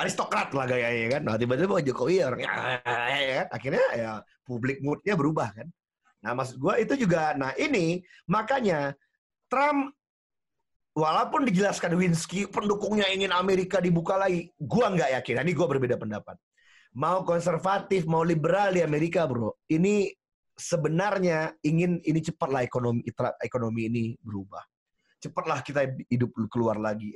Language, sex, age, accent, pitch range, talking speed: Indonesian, male, 30-49, native, 145-195 Hz, 135 wpm